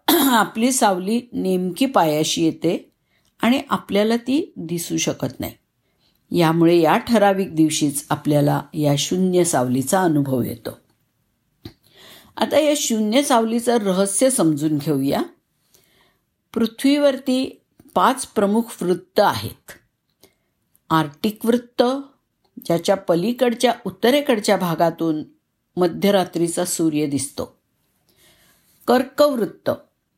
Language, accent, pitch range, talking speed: Marathi, native, 175-240 Hz, 90 wpm